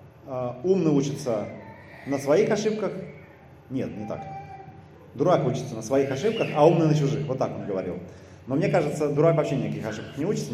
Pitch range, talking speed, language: 140-175 Hz, 170 wpm, Russian